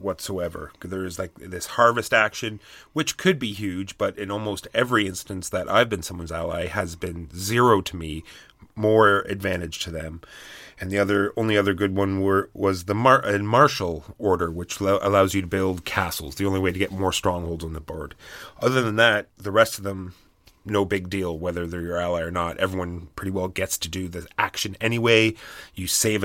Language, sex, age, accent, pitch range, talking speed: English, male, 30-49, American, 95-110 Hz, 200 wpm